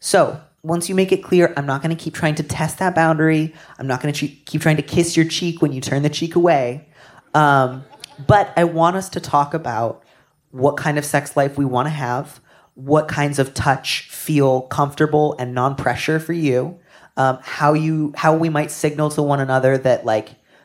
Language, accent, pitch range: English, American, 125-160 Hz